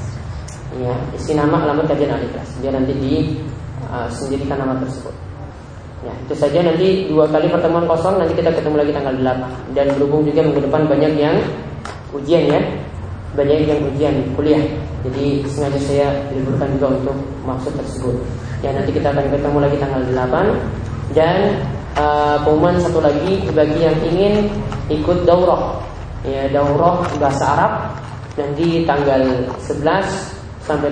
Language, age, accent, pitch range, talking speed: Indonesian, 20-39, native, 135-160 Hz, 145 wpm